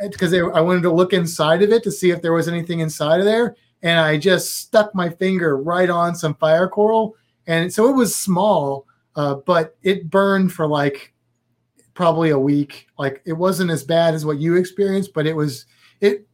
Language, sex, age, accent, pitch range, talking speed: English, male, 30-49, American, 155-195 Hz, 205 wpm